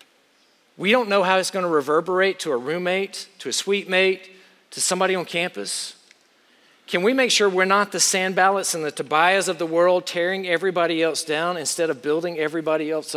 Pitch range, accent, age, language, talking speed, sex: 155-190 Hz, American, 50-69, English, 185 wpm, male